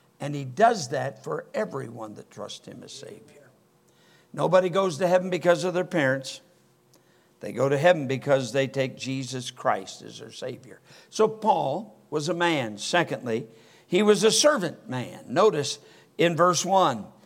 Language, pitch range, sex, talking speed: English, 145-210 Hz, male, 160 wpm